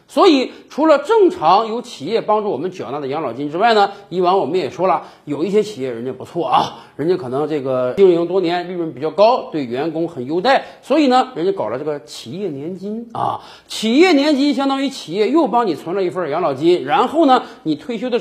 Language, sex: Chinese, male